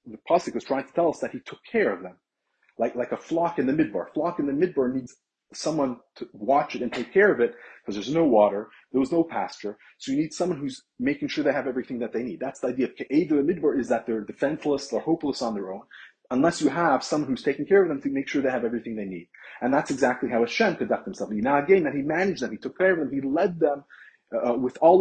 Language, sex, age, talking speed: English, male, 30-49, 270 wpm